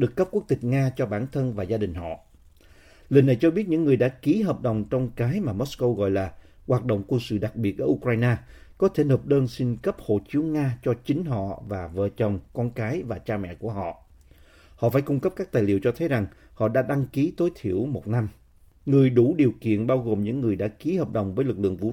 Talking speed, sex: 250 wpm, male